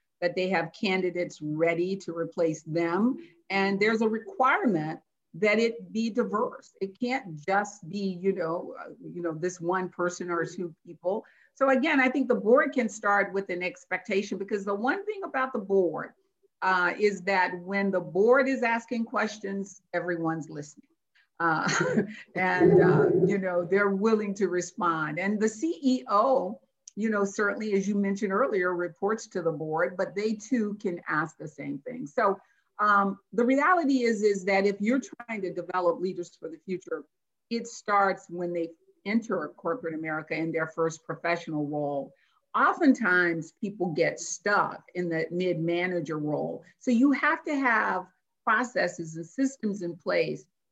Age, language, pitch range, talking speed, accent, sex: 50-69, English, 175-230 Hz, 160 wpm, American, female